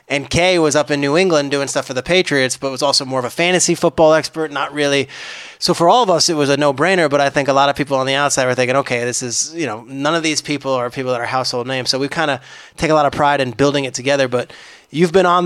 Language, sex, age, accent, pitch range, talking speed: English, male, 20-39, American, 135-175 Hz, 295 wpm